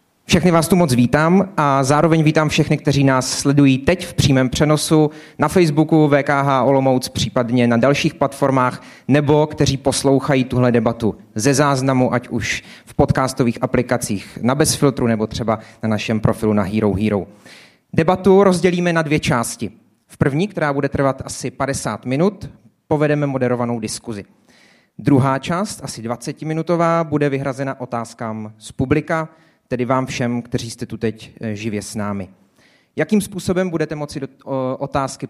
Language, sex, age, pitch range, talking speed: Czech, male, 30-49, 115-150 Hz, 145 wpm